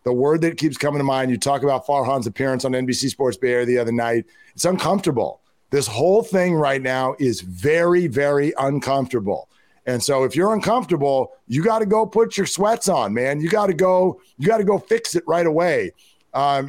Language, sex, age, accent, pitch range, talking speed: English, male, 40-59, American, 135-160 Hz, 200 wpm